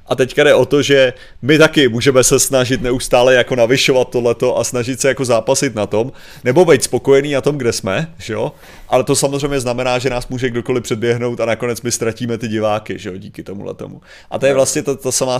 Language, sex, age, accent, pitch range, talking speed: Czech, male, 30-49, native, 115-150 Hz, 215 wpm